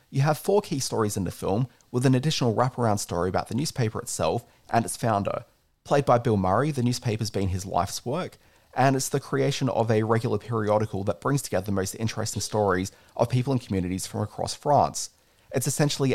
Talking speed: 200 wpm